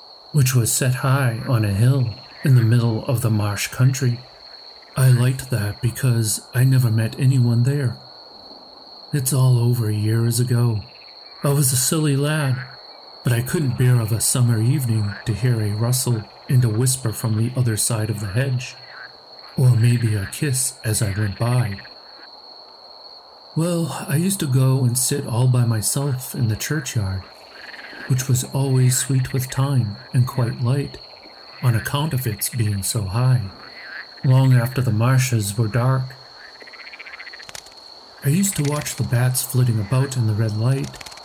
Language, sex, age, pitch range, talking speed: English, male, 50-69, 115-130 Hz, 160 wpm